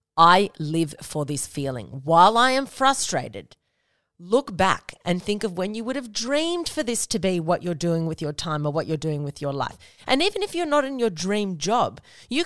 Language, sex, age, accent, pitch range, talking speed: English, female, 30-49, Australian, 180-260 Hz, 220 wpm